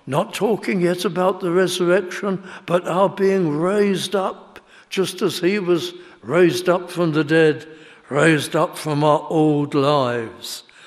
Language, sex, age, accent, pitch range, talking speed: English, male, 60-79, British, 135-185 Hz, 145 wpm